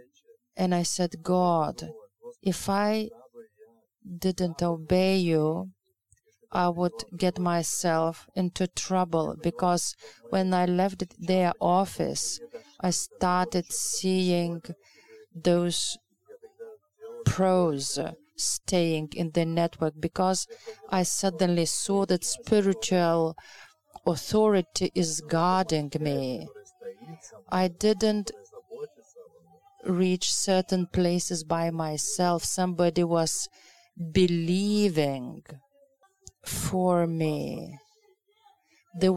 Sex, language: female, English